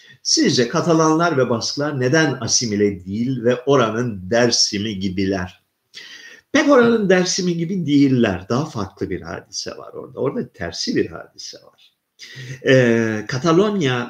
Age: 50-69